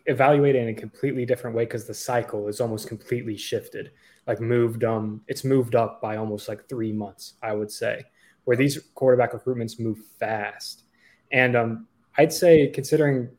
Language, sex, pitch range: English, male, 115-140 Hz